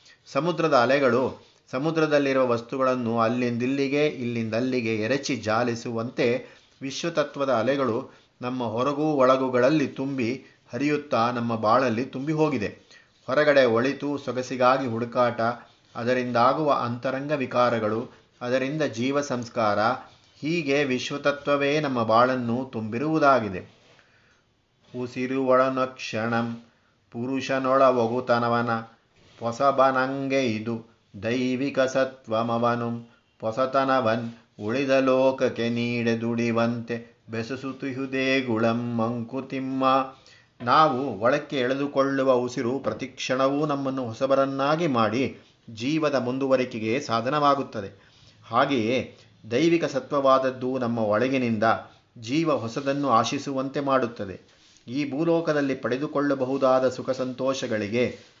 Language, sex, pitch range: Kannada, male, 115-135 Hz